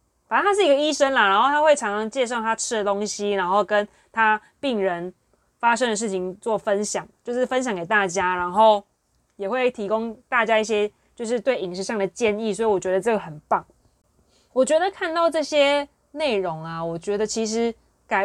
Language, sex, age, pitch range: Chinese, female, 20-39, 190-280 Hz